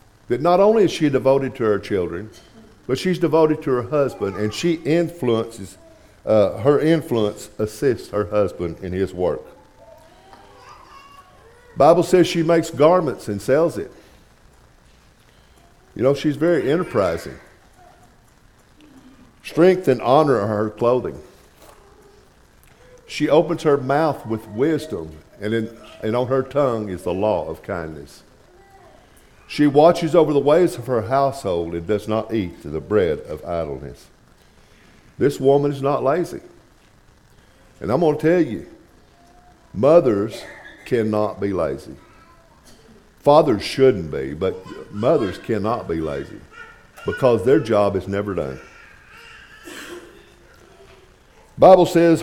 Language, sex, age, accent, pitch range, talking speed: English, male, 50-69, American, 100-150 Hz, 130 wpm